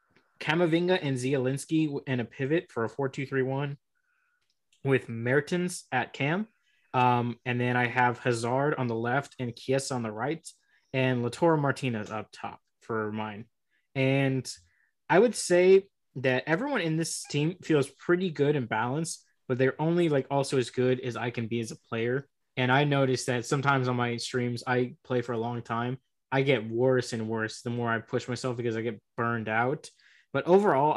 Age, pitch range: 20-39, 120-150 Hz